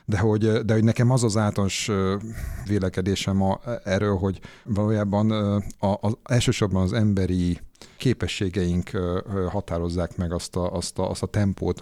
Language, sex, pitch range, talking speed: Hungarian, male, 85-105 Hz, 110 wpm